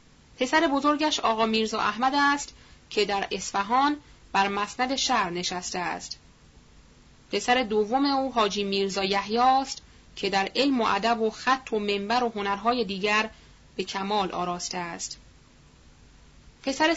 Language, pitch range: Persian, 195-255 Hz